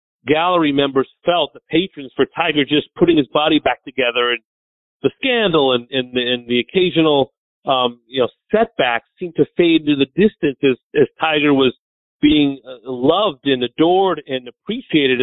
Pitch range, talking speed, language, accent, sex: 130-155 Hz, 165 wpm, English, American, male